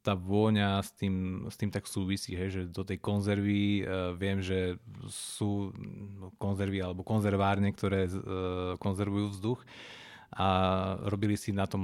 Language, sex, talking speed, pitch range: Slovak, male, 130 wpm, 95-110 Hz